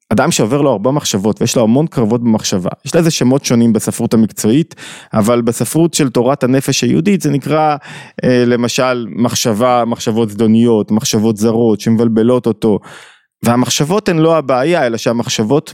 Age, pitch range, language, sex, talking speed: 20-39, 115-165 Hz, Hebrew, male, 145 wpm